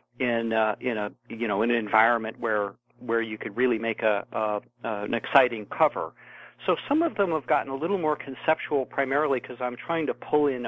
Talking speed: 220 wpm